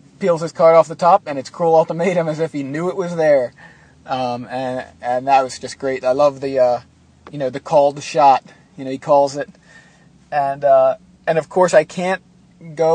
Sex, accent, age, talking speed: male, American, 30-49, 215 wpm